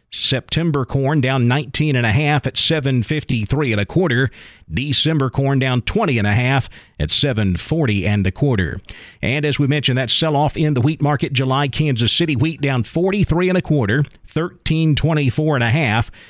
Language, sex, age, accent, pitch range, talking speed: English, male, 40-59, American, 120-160 Hz, 190 wpm